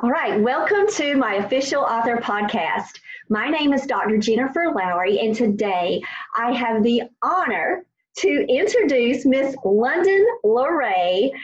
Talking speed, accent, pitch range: 130 wpm, American, 220-280 Hz